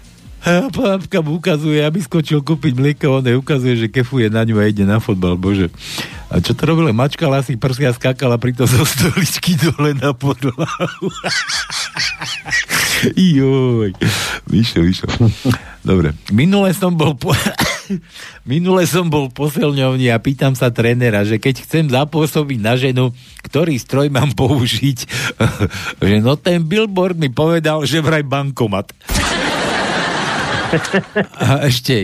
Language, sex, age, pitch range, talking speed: Slovak, male, 50-69, 115-160 Hz, 130 wpm